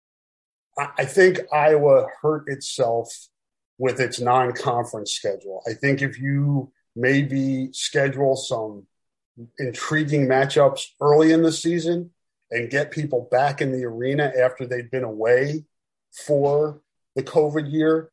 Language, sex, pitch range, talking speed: English, male, 120-145 Hz, 125 wpm